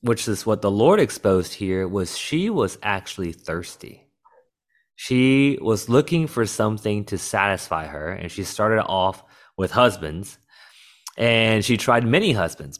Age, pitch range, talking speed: 20-39, 95-120 Hz, 145 wpm